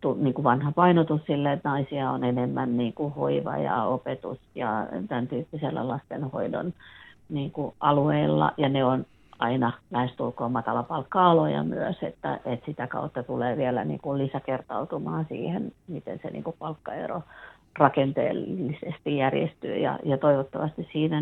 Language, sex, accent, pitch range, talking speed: Finnish, female, native, 125-150 Hz, 125 wpm